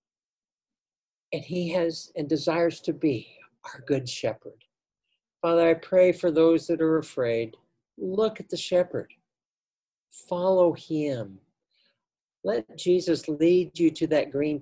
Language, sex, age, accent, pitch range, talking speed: English, male, 60-79, American, 140-175 Hz, 125 wpm